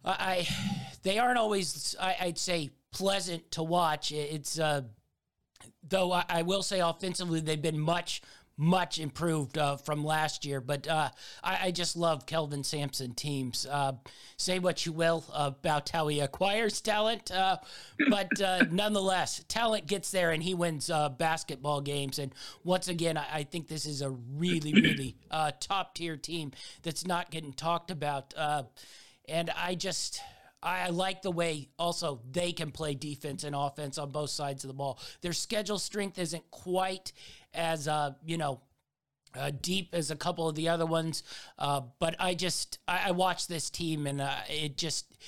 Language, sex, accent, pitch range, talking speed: English, male, American, 145-180 Hz, 175 wpm